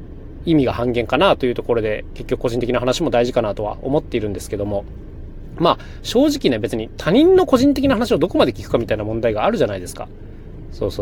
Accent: native